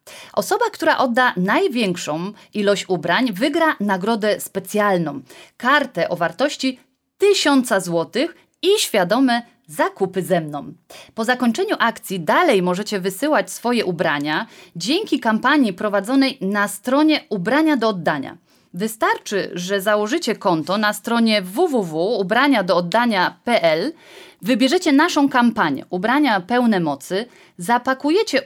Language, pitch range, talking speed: Polish, 190-290 Hz, 105 wpm